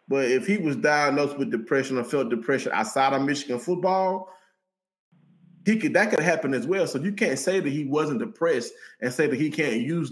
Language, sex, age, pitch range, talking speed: English, male, 20-39, 135-175 Hz, 210 wpm